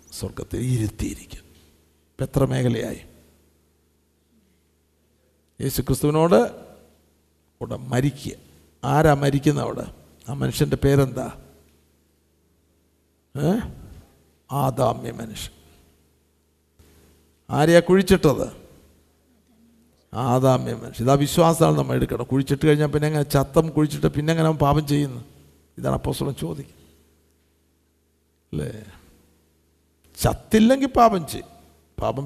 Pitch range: 80-130 Hz